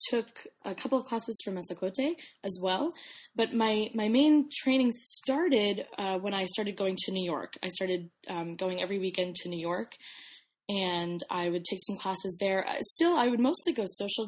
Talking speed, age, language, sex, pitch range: 190 wpm, 20-39, English, female, 180-220 Hz